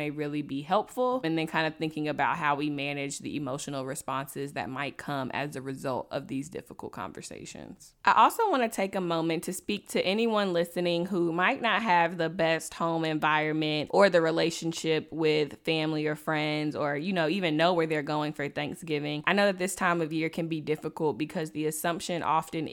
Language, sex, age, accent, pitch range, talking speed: English, female, 20-39, American, 150-175 Hz, 205 wpm